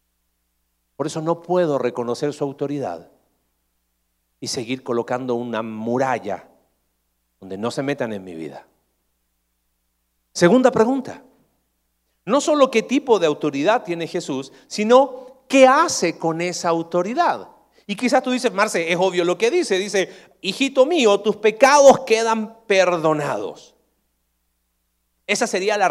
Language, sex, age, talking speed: Spanish, male, 40-59, 125 wpm